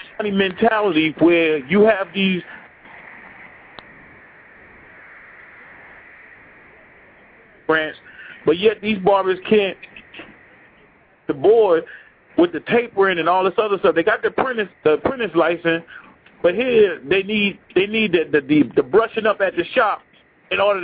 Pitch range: 175-220 Hz